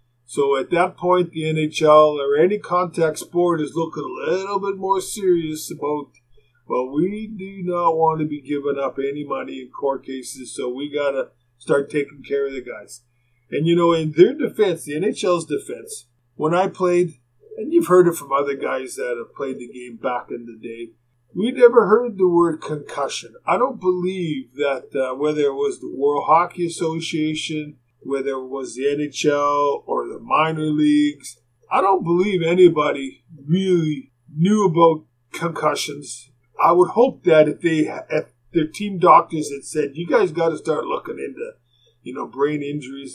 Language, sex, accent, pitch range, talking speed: English, male, American, 140-180 Hz, 175 wpm